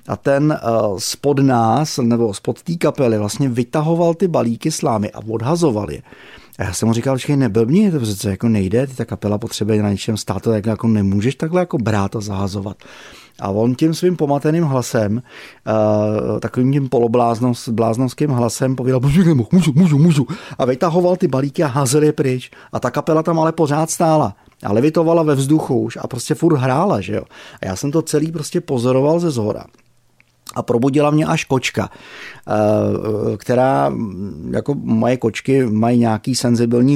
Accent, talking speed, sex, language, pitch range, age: native, 165 wpm, male, Czech, 110-140 Hz, 30-49